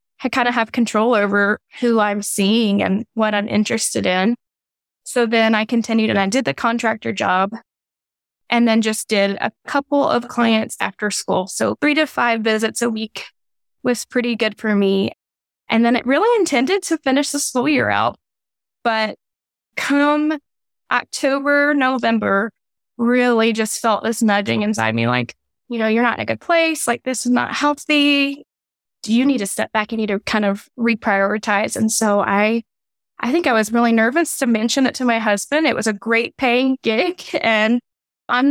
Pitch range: 215-260 Hz